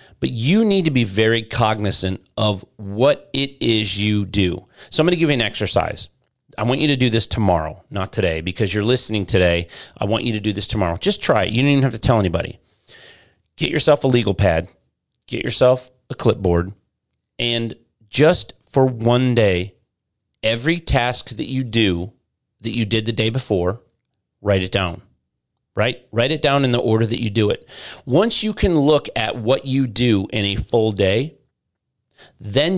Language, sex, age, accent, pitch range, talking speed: English, male, 30-49, American, 100-125 Hz, 190 wpm